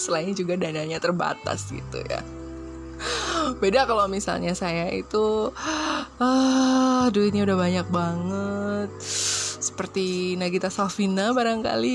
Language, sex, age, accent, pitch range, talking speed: Indonesian, female, 20-39, native, 160-220 Hz, 100 wpm